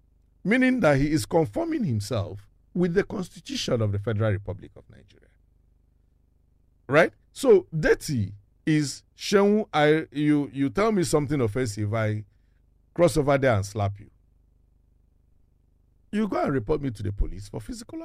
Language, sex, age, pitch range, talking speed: English, male, 50-69, 95-150 Hz, 145 wpm